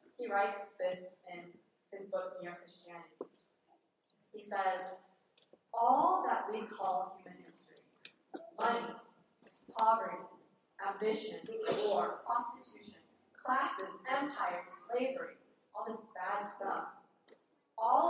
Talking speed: 95 wpm